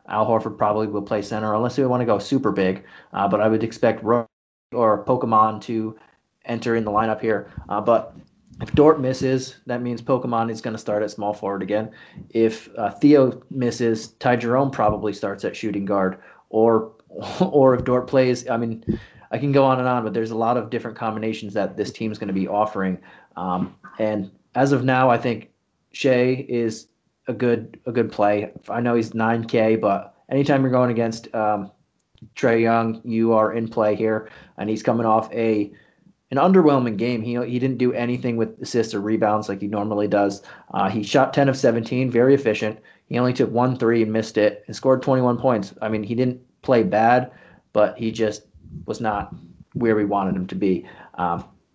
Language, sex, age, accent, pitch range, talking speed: English, male, 30-49, American, 110-125 Hz, 200 wpm